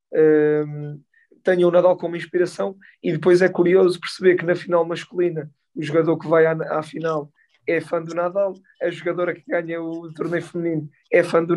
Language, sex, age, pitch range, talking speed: Portuguese, male, 20-39, 170-200 Hz, 180 wpm